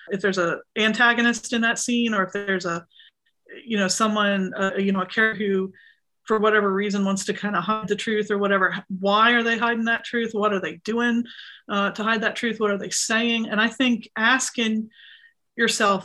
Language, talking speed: English, 210 wpm